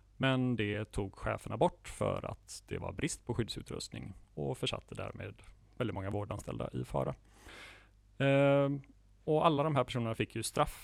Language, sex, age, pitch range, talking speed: Swedish, male, 30-49, 100-125 Hz, 160 wpm